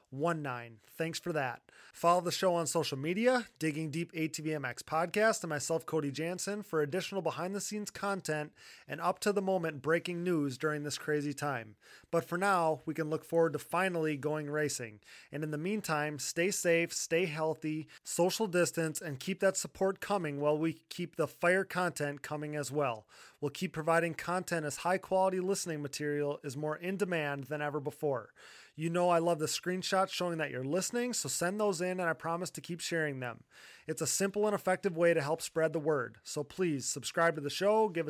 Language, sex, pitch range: English, male, 150-190 Hz